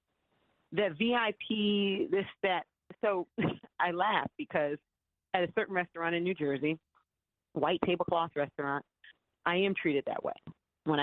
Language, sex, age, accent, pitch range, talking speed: English, female, 40-59, American, 160-220 Hz, 130 wpm